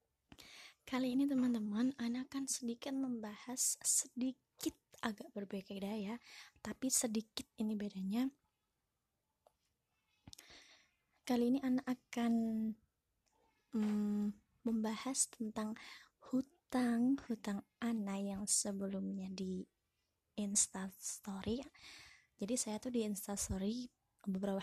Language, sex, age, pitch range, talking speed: Indonesian, female, 20-39, 205-245 Hz, 90 wpm